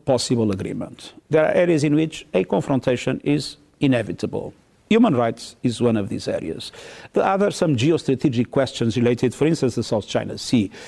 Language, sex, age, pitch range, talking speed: English, male, 50-69, 125-180 Hz, 165 wpm